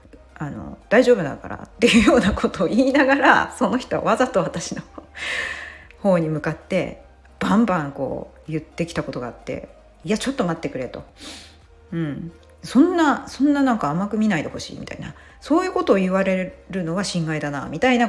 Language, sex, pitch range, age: Japanese, female, 150-235 Hz, 40-59